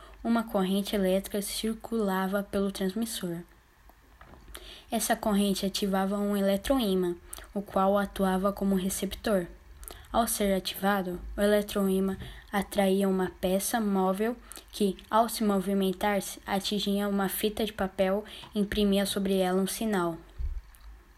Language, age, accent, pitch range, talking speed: Portuguese, 10-29, Brazilian, 185-205 Hz, 115 wpm